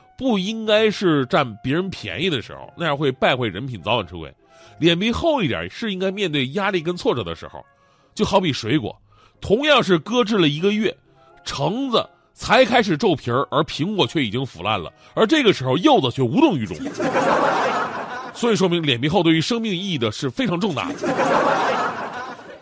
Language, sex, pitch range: Chinese, male, 130-210 Hz